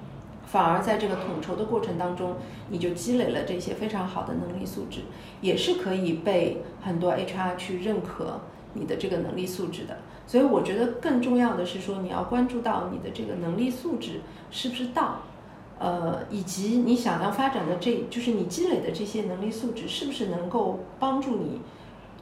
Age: 50-69